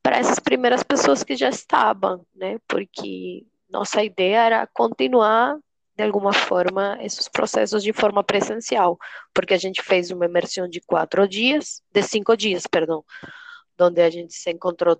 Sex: female